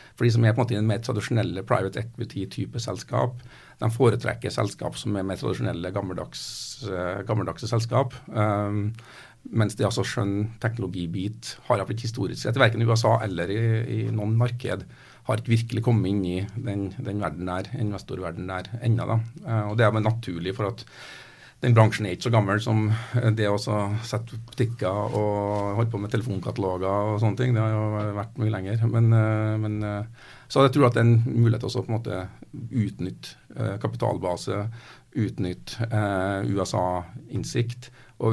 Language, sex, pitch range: English, male, 100-120 Hz